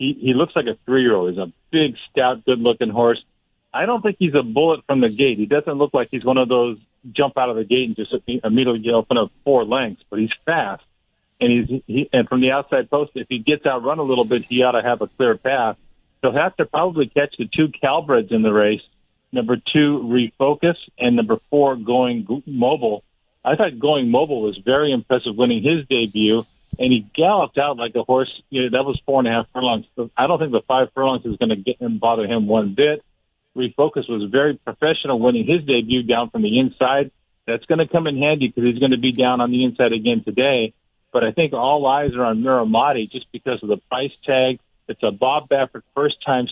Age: 50-69